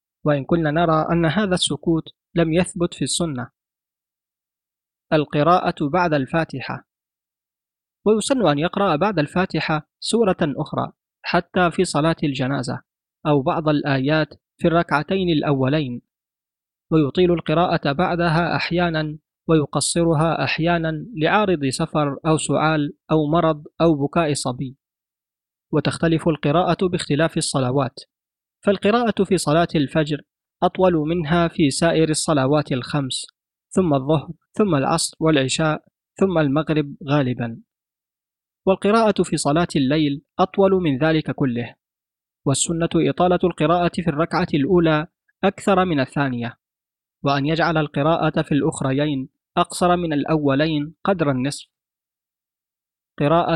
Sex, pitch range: male, 145-175 Hz